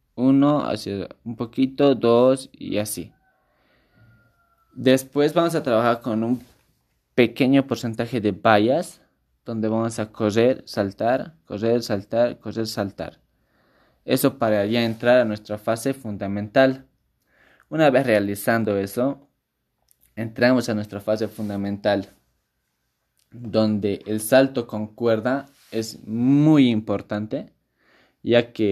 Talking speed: 110 wpm